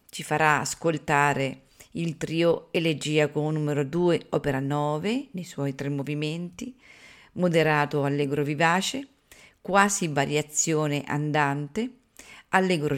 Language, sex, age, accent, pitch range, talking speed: Italian, female, 40-59, native, 145-185 Hz, 100 wpm